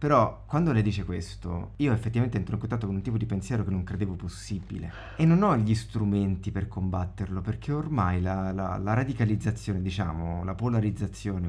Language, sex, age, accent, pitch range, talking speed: Italian, male, 30-49, native, 95-115 Hz, 180 wpm